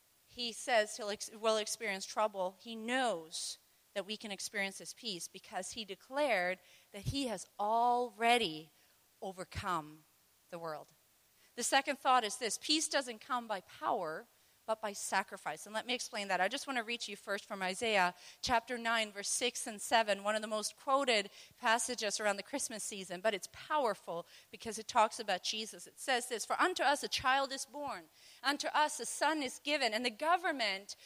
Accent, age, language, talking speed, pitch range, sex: American, 40-59, English, 180 wpm, 210-300 Hz, female